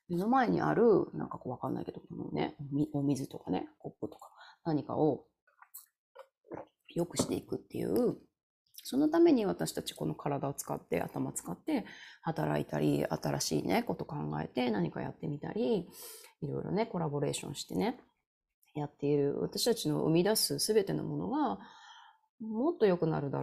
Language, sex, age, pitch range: Japanese, female, 30-49, 145-220 Hz